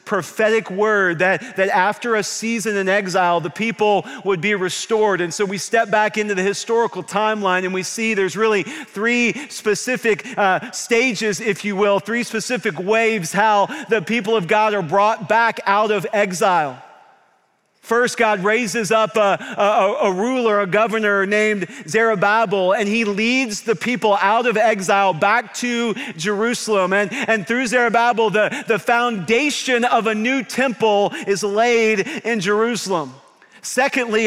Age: 40-59